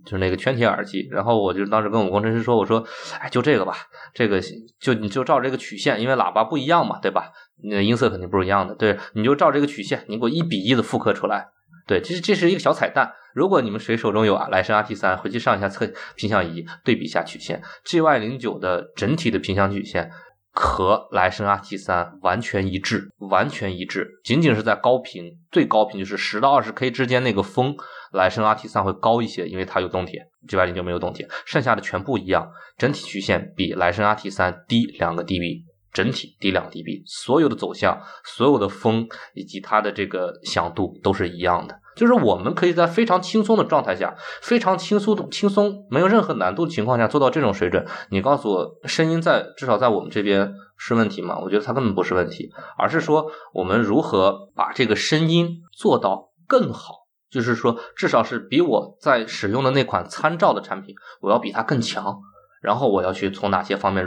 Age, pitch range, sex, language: 20-39, 95-140 Hz, male, Chinese